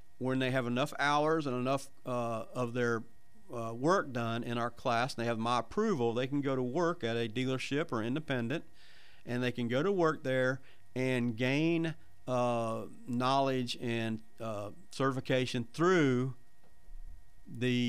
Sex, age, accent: male, 50-69, American